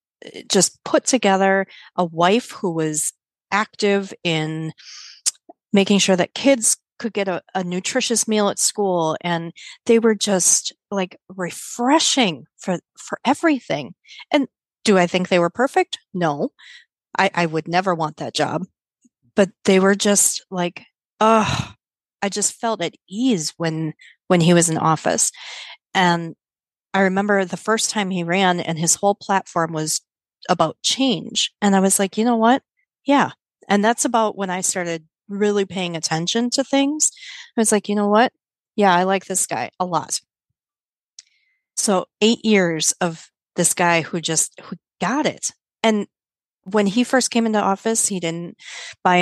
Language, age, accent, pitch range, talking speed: English, 30-49, American, 170-225 Hz, 160 wpm